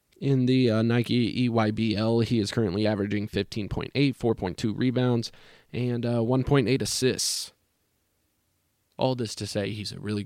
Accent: American